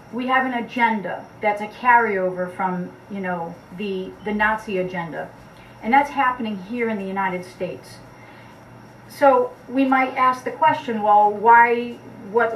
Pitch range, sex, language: 200-265 Hz, female, English